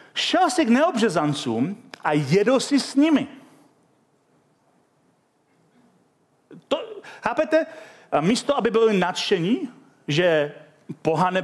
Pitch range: 165-240 Hz